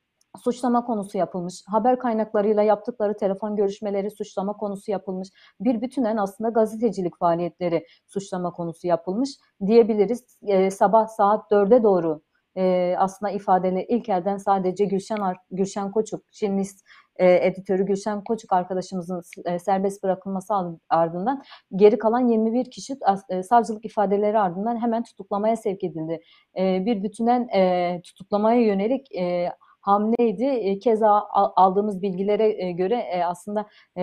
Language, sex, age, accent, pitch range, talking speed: Turkish, female, 40-59, native, 185-225 Hz, 130 wpm